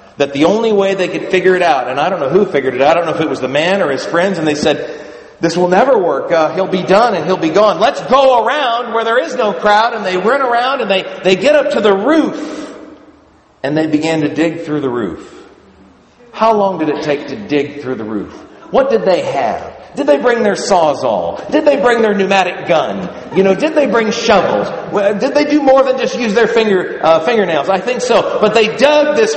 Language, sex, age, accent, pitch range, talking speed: English, male, 40-59, American, 170-265 Hz, 245 wpm